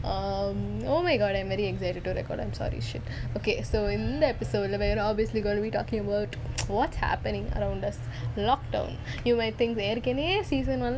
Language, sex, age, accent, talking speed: Tamil, female, 10-29, native, 200 wpm